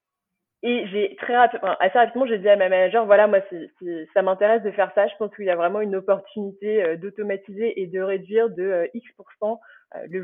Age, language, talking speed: 20-39, French, 225 wpm